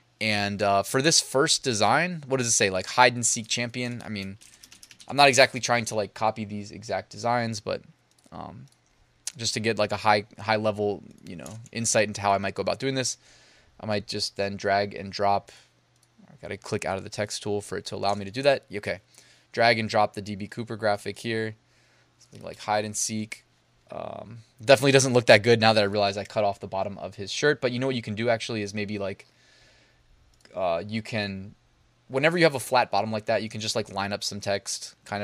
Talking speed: 230 wpm